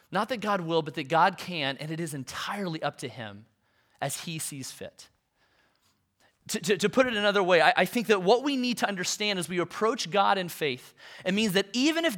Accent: American